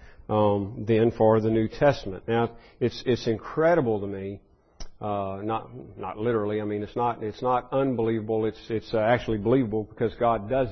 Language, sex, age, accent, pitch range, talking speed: English, male, 40-59, American, 100-120 Hz, 175 wpm